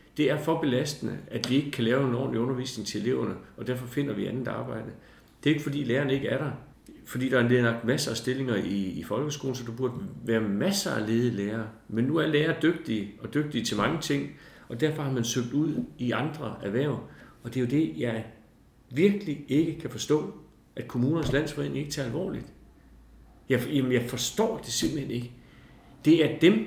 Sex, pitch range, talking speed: male, 115-145 Hz, 200 wpm